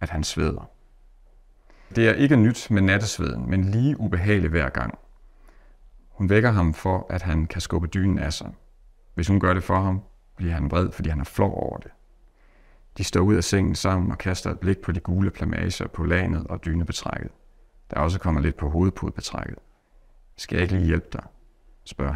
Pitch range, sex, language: 85-100 Hz, male, Danish